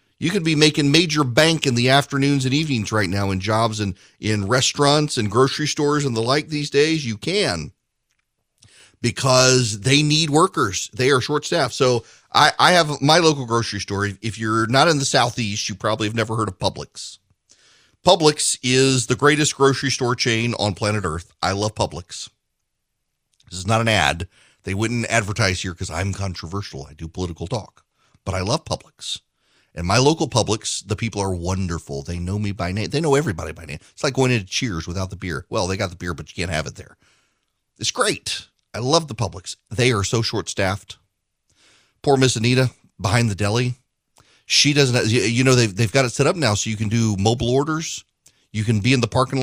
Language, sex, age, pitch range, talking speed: English, male, 40-59, 105-135 Hz, 205 wpm